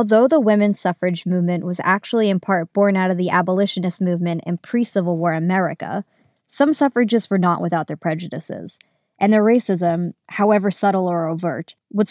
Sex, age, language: male, 20-39, English